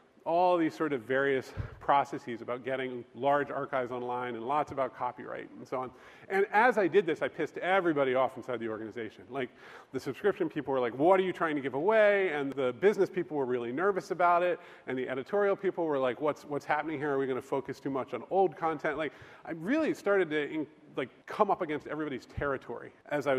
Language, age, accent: English, 40-59, American